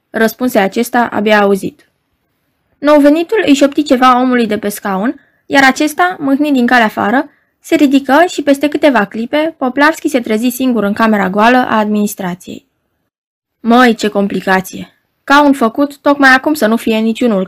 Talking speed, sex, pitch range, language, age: 160 wpm, female, 225-300 Hz, Romanian, 20-39